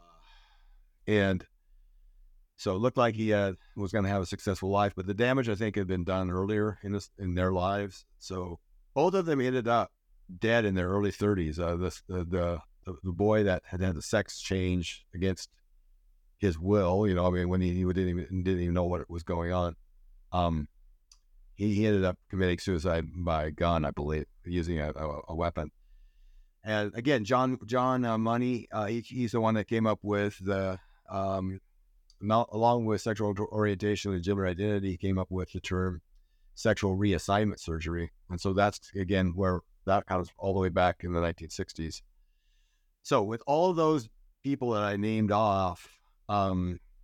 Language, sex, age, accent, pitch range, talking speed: English, male, 50-69, American, 90-105 Hz, 175 wpm